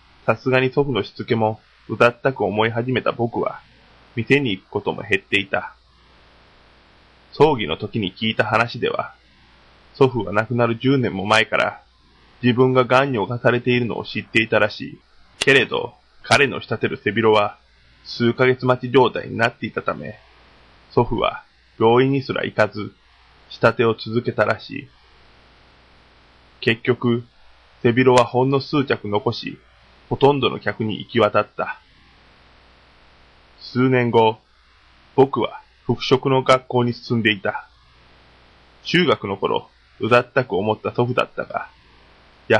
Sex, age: male, 20-39